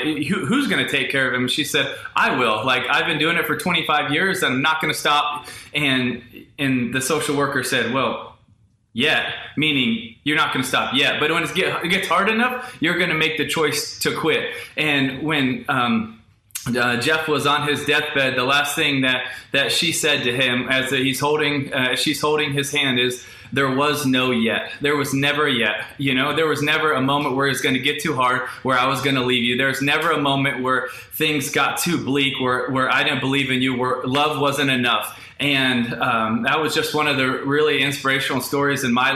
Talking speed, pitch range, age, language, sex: 215 wpm, 130-155 Hz, 20-39, English, male